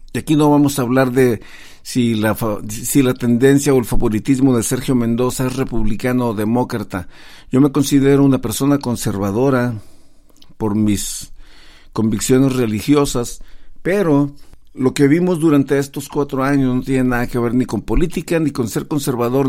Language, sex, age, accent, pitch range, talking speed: Spanish, male, 50-69, Mexican, 120-150 Hz, 155 wpm